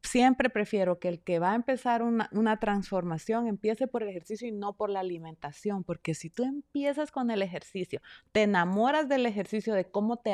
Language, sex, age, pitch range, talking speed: Spanish, female, 30-49, 180-230 Hz, 195 wpm